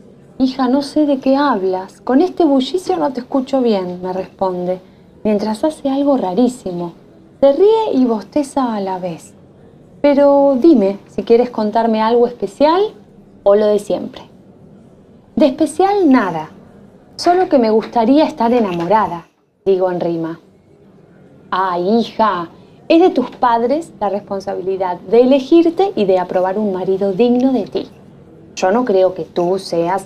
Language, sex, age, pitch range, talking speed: Spanish, female, 20-39, 190-275 Hz, 150 wpm